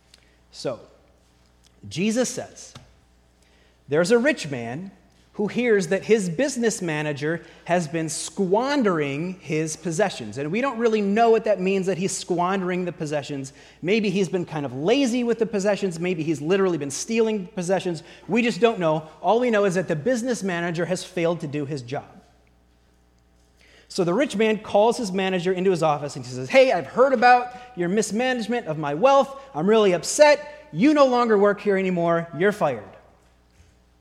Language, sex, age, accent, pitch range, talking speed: English, male, 30-49, American, 145-220 Hz, 175 wpm